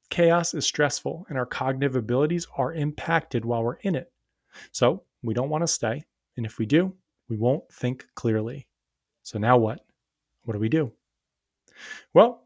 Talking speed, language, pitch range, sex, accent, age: 170 wpm, English, 120-160 Hz, male, American, 30-49